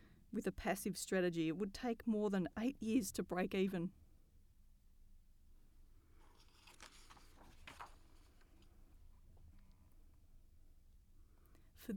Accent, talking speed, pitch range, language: Australian, 75 wpm, 180-235 Hz, English